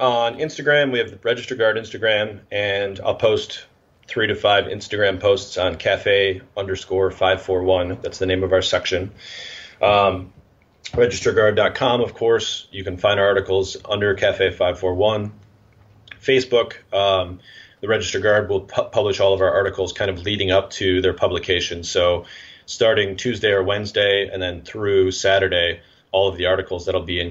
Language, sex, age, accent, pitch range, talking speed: English, male, 30-49, American, 95-125 Hz, 160 wpm